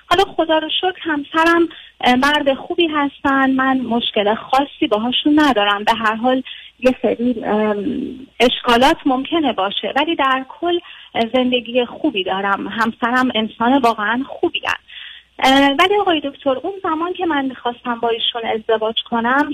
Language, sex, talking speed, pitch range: Persian, female, 130 wpm, 225-290 Hz